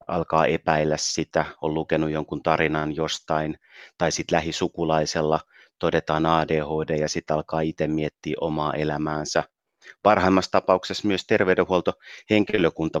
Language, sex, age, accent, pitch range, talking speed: Finnish, male, 30-49, native, 80-95 Hz, 110 wpm